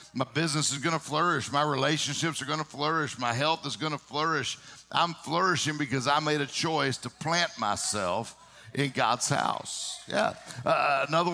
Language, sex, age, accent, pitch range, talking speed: English, male, 60-79, American, 125-160 Hz, 165 wpm